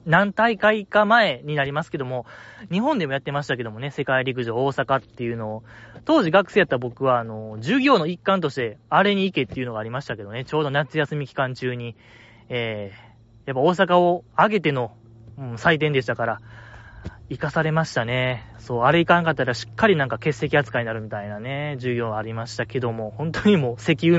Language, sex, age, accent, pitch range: Japanese, male, 20-39, native, 110-160 Hz